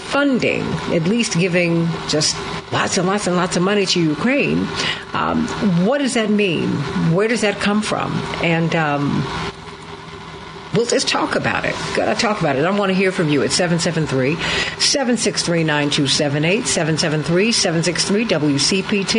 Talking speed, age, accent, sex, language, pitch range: 140 wpm, 60-79, American, female, English, 165-210 Hz